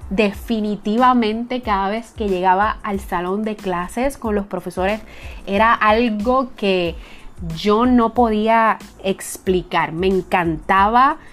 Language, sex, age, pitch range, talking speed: Spanish, female, 30-49, 190-235 Hz, 110 wpm